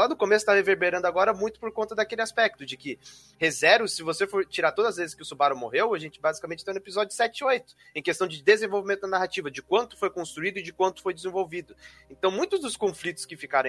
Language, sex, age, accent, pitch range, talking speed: Portuguese, male, 20-39, Brazilian, 160-215 Hz, 240 wpm